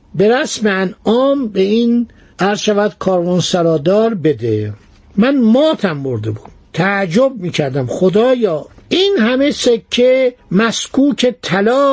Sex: male